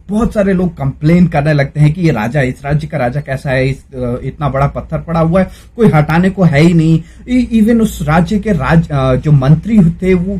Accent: native